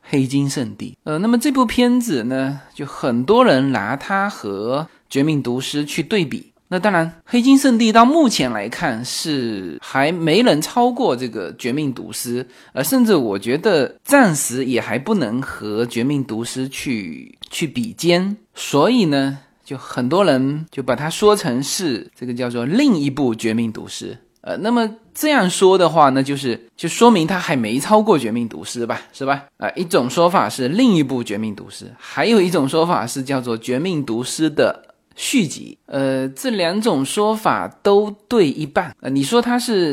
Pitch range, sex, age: 130-210 Hz, male, 20-39